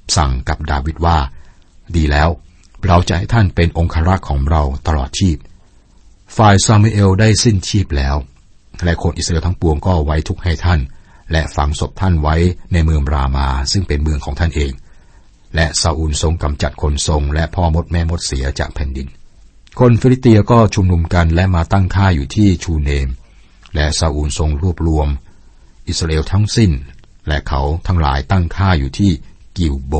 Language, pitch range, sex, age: Thai, 75-95 Hz, male, 60-79